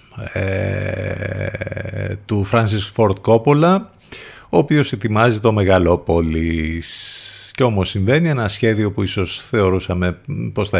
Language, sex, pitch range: Greek, male, 90-115 Hz